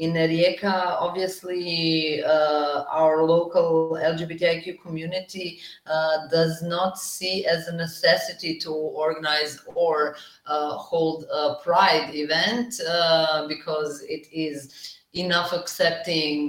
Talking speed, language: 105 wpm, English